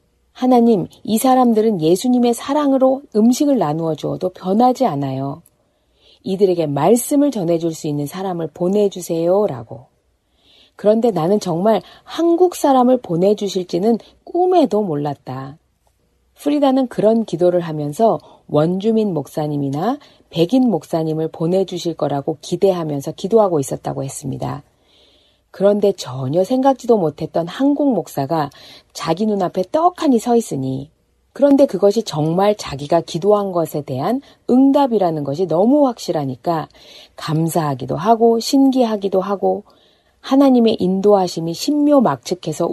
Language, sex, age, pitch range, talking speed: English, female, 40-59, 155-240 Hz, 95 wpm